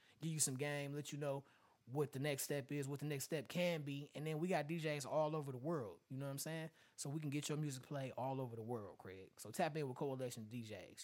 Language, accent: English, American